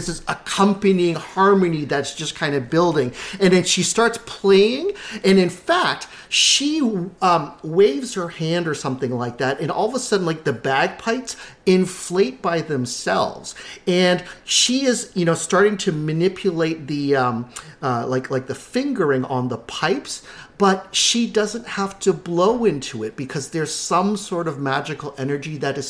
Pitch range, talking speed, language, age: 170-275 Hz, 165 wpm, English, 40-59